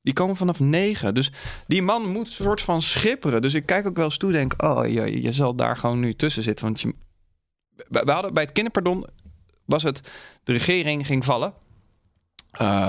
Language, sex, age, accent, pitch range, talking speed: Dutch, male, 20-39, Dutch, 110-155 Hz, 205 wpm